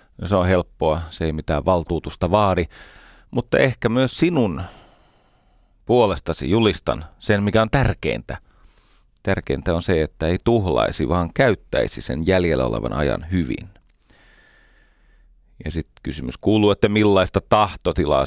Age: 30-49